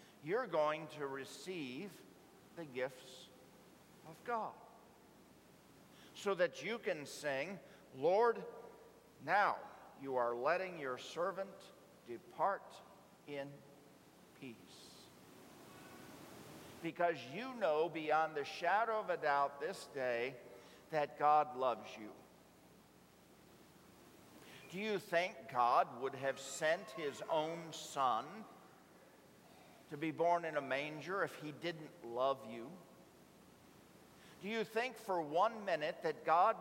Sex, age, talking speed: male, 50-69, 110 wpm